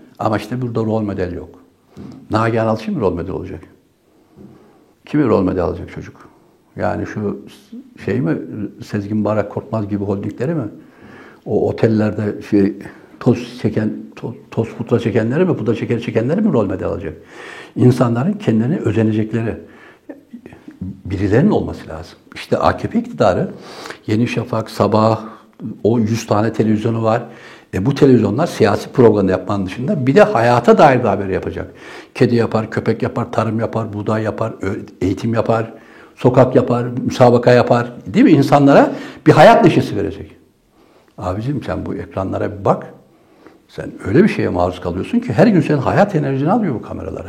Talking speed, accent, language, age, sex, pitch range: 145 wpm, native, Turkish, 60-79, male, 110-140 Hz